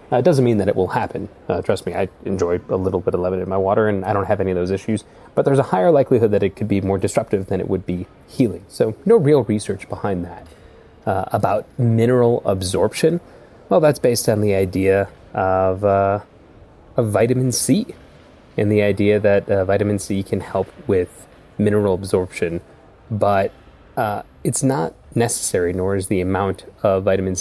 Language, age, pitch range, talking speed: English, 20-39, 95-110 Hz, 195 wpm